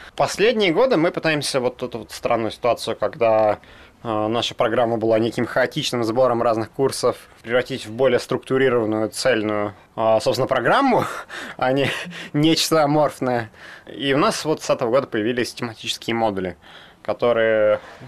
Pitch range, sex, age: 95-125 Hz, male, 20-39